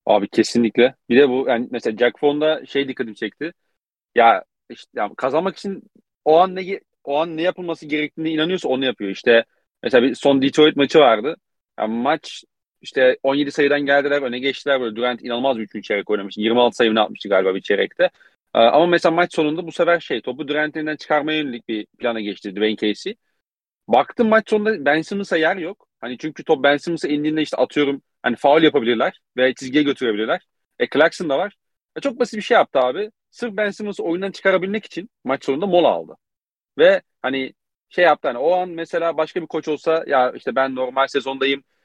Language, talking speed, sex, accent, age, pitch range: Turkish, 190 wpm, male, native, 40-59, 130-180 Hz